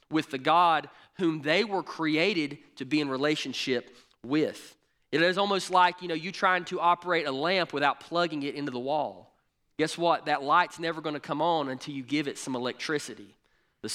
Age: 30-49